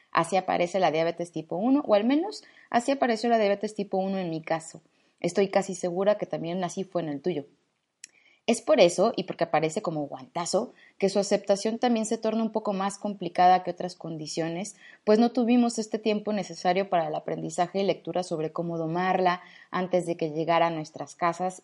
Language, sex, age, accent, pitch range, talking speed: Spanish, female, 20-39, Mexican, 170-215 Hz, 195 wpm